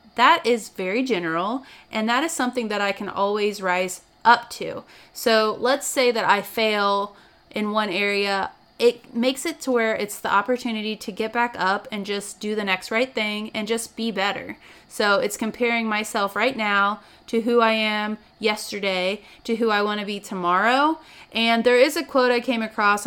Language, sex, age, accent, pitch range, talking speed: English, female, 30-49, American, 200-245 Hz, 185 wpm